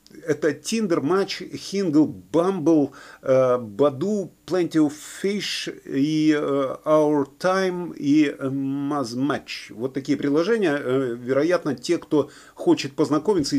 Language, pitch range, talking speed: Russian, 140-205 Hz, 95 wpm